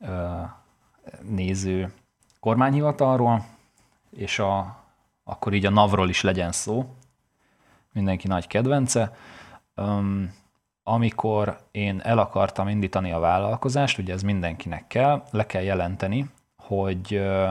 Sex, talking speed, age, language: male, 100 wpm, 30-49, Hungarian